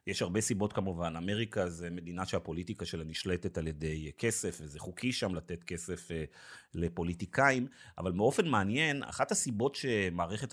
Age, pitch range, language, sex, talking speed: 30-49, 90-120 Hz, Hebrew, male, 140 wpm